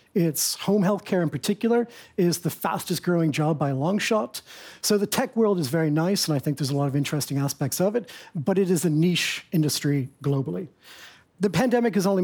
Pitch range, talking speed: 155-200 Hz, 210 wpm